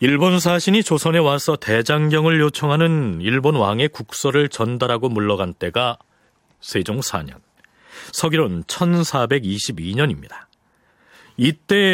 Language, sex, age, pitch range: Korean, male, 40-59, 125-170 Hz